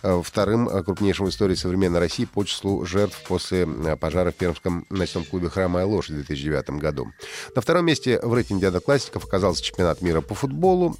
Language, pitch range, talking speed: Russian, 90-125 Hz, 175 wpm